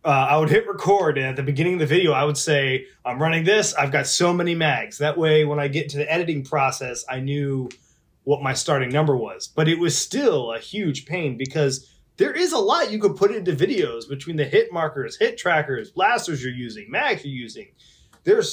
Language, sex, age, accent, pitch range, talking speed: English, male, 20-39, American, 135-175 Hz, 225 wpm